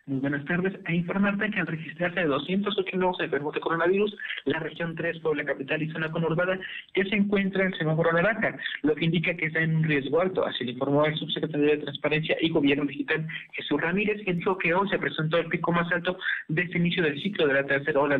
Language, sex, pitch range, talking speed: Spanish, male, 155-180 Hz, 230 wpm